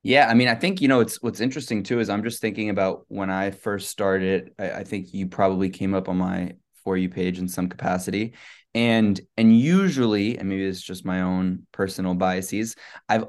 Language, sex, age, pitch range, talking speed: English, male, 20-39, 100-120 Hz, 210 wpm